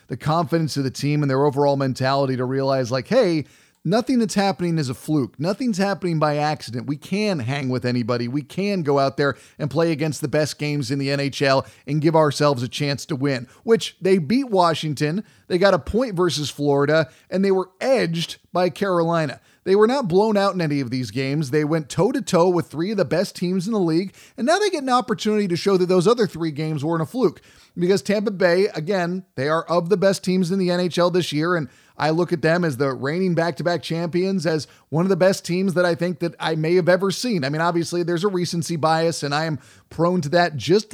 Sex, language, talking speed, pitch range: male, English, 230 wpm, 150-190 Hz